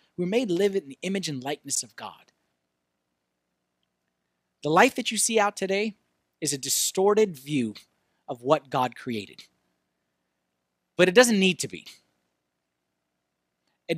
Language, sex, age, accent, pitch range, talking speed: English, male, 30-49, American, 145-220 Hz, 135 wpm